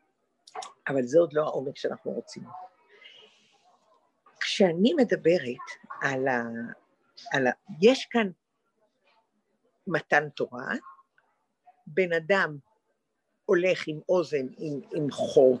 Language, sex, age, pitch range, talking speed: English, female, 50-69, 150-230 Hz, 95 wpm